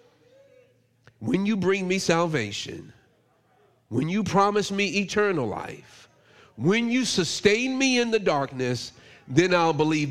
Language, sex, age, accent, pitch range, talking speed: English, male, 40-59, American, 125-200 Hz, 125 wpm